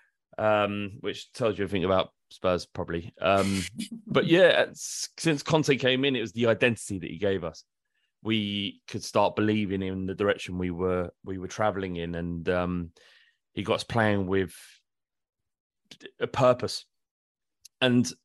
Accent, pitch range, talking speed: British, 95-110 Hz, 160 wpm